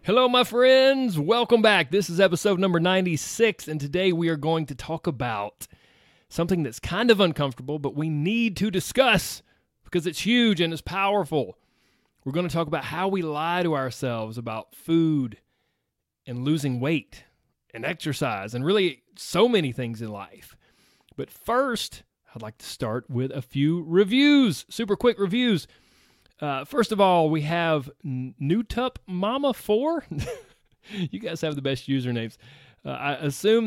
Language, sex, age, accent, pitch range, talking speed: English, male, 30-49, American, 130-185 Hz, 155 wpm